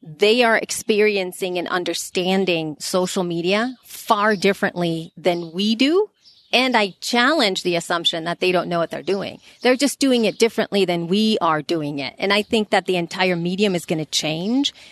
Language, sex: English, female